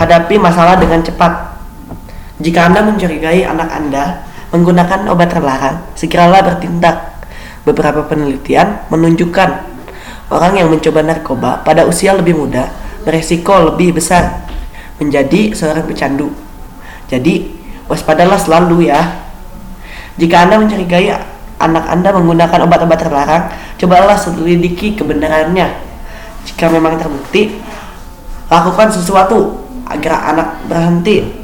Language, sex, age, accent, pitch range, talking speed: Indonesian, female, 20-39, native, 160-180 Hz, 105 wpm